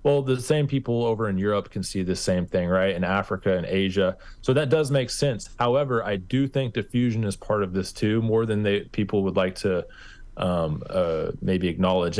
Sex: male